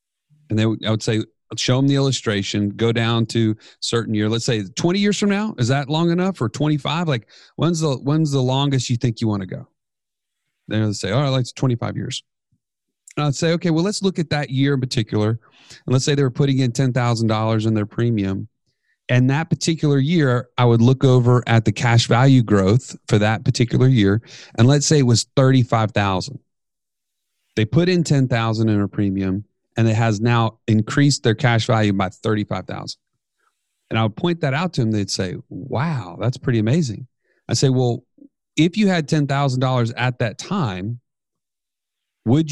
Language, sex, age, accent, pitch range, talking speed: English, male, 30-49, American, 110-145 Hz, 200 wpm